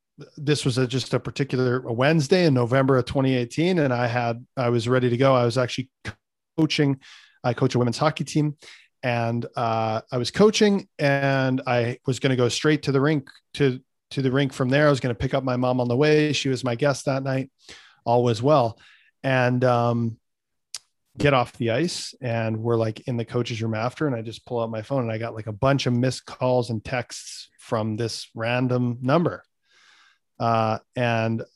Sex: male